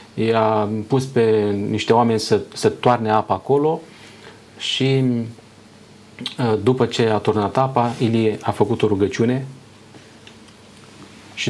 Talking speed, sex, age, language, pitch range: 115 wpm, male, 30-49, Romanian, 110-135 Hz